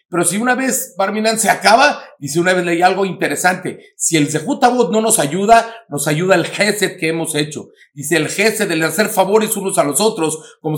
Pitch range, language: 180-235 Hz, Spanish